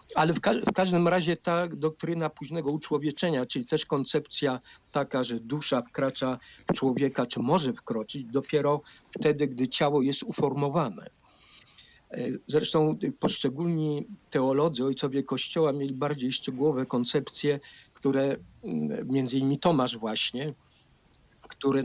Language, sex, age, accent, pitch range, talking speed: Polish, male, 50-69, native, 130-150 Hz, 120 wpm